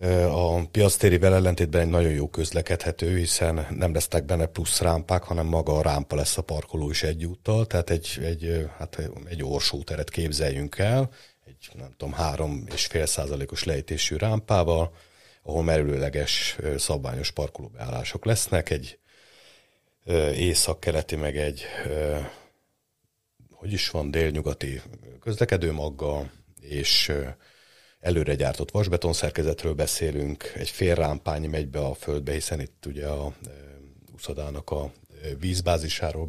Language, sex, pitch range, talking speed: Hungarian, male, 70-85 Hz, 120 wpm